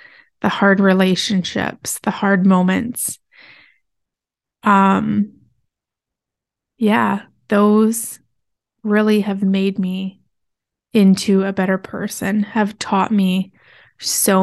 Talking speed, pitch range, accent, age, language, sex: 85 wpm, 185-210 Hz, American, 20-39, English, female